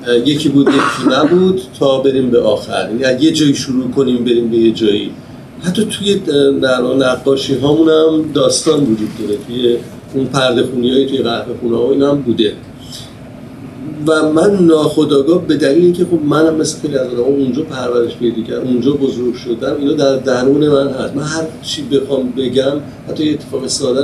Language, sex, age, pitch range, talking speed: Persian, male, 50-69, 120-140 Hz, 170 wpm